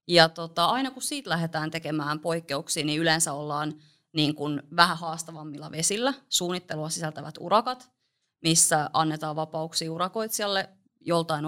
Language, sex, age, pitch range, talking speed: Finnish, female, 30-49, 155-185 Hz, 125 wpm